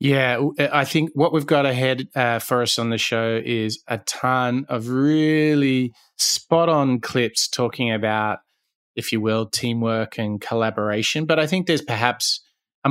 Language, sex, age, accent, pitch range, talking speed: English, male, 20-39, Australian, 115-135 Hz, 165 wpm